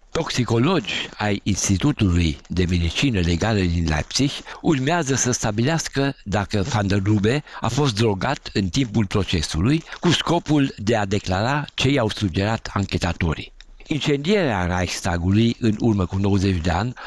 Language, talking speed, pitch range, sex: Romanian, 135 wpm, 95-125 Hz, male